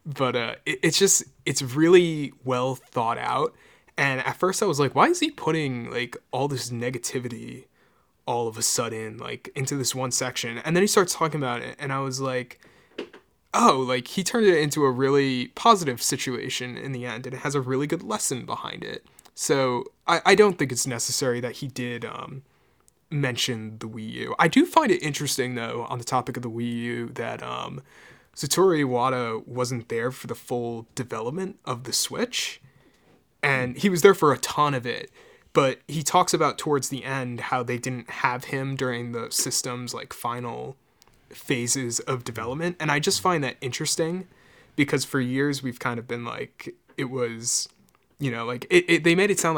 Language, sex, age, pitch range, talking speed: English, male, 20-39, 120-145 Hz, 195 wpm